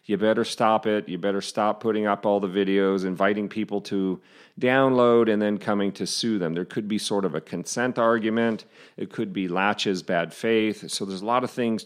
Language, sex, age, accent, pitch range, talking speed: English, male, 40-59, American, 100-120 Hz, 215 wpm